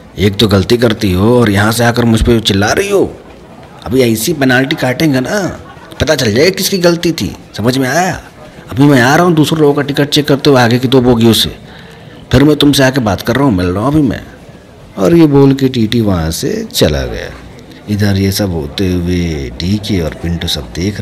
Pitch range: 85-115 Hz